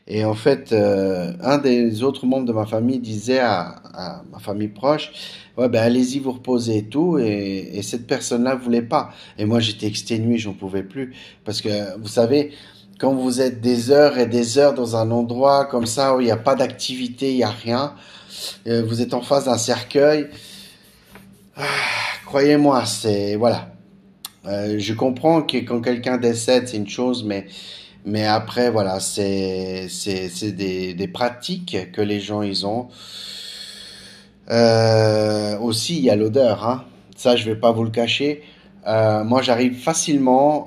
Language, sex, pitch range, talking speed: French, male, 105-130 Hz, 175 wpm